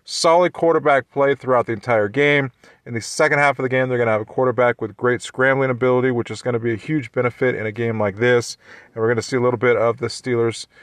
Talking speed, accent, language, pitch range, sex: 265 wpm, American, English, 115-145 Hz, male